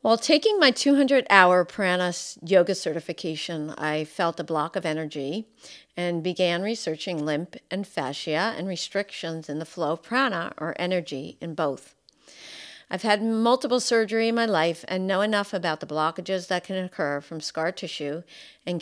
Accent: American